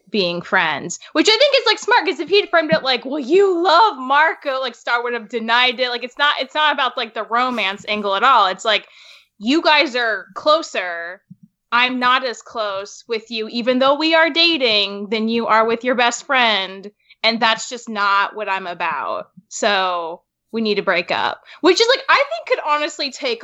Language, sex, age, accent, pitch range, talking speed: English, female, 10-29, American, 220-295 Hz, 205 wpm